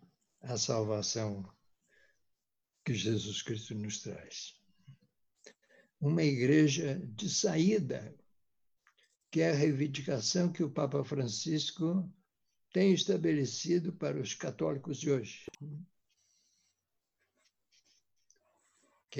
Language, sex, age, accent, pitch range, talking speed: Portuguese, male, 60-79, Brazilian, 130-165 Hz, 85 wpm